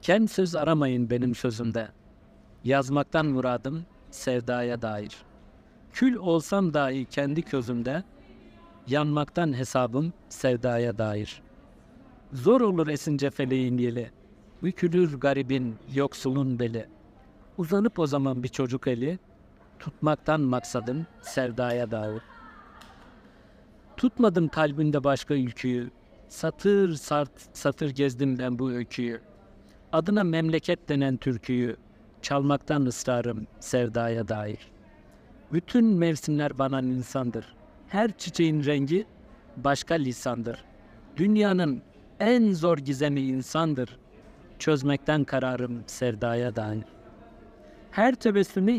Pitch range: 120-160 Hz